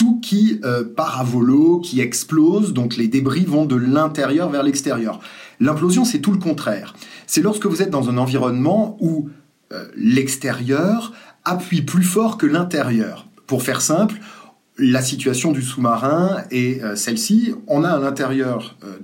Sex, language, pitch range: male, French, 125-190 Hz